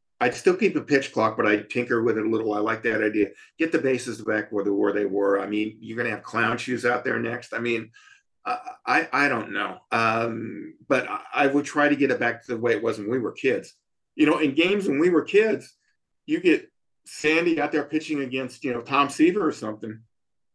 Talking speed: 240 wpm